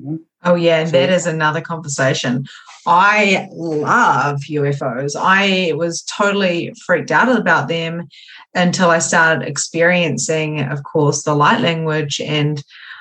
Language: English